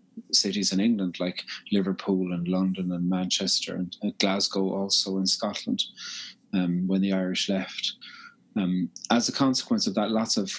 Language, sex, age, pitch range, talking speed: English, male, 30-49, 95-110 Hz, 160 wpm